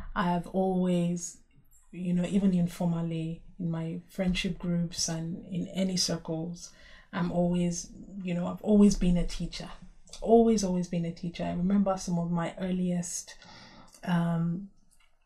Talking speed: 140 wpm